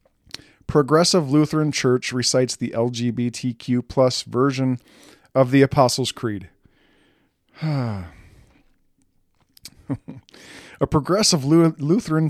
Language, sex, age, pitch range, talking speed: English, male, 40-59, 120-155 Hz, 75 wpm